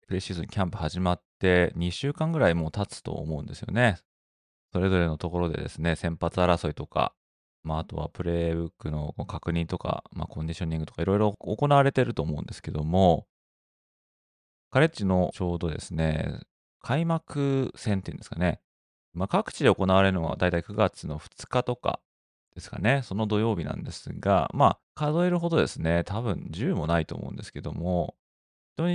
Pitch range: 80-105 Hz